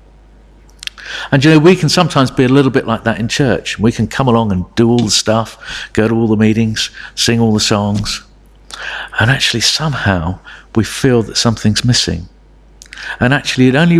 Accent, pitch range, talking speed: British, 105-135 Hz, 190 wpm